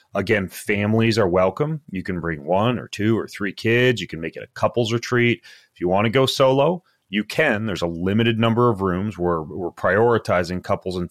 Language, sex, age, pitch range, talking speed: English, male, 30-49, 95-115 Hz, 210 wpm